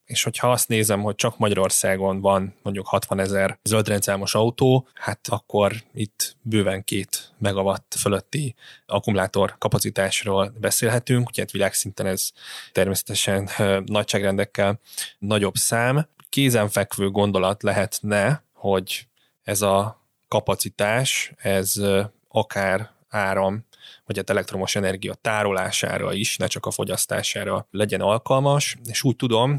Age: 20-39